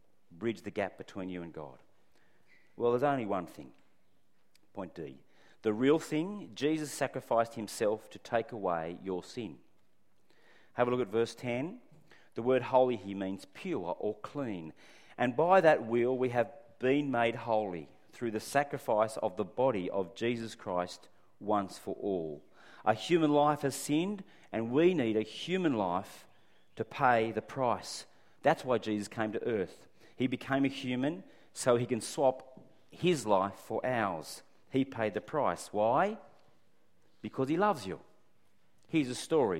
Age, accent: 40-59, Australian